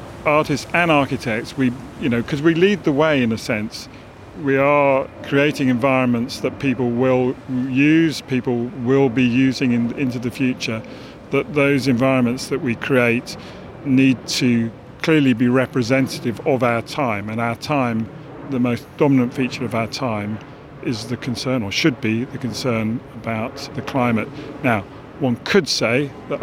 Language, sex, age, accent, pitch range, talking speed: English, male, 40-59, British, 120-140 Hz, 155 wpm